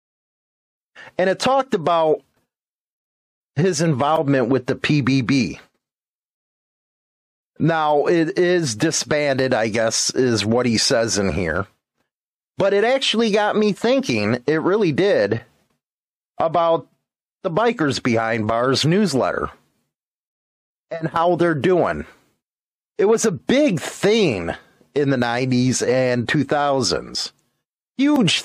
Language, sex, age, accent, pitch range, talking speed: English, male, 30-49, American, 130-175 Hz, 110 wpm